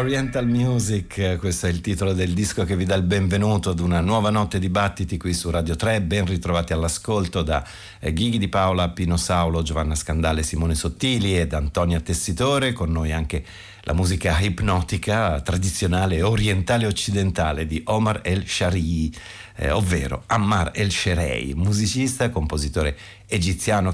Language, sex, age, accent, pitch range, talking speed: Italian, male, 50-69, native, 80-105 Hz, 150 wpm